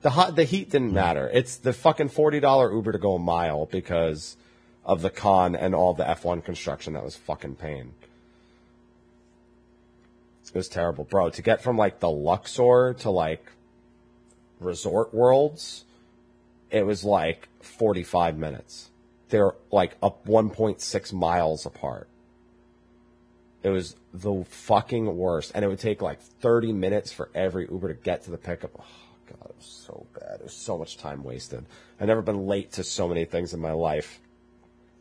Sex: male